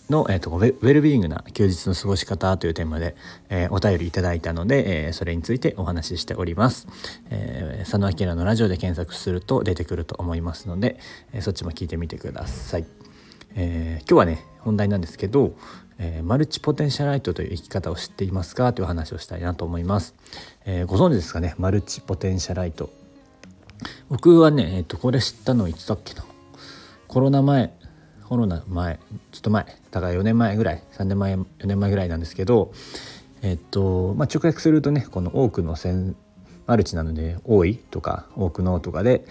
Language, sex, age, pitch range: Japanese, male, 40-59, 85-115 Hz